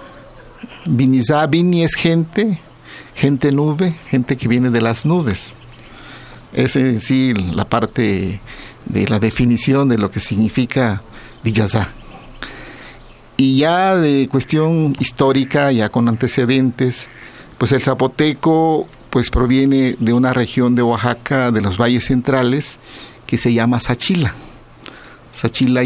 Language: Spanish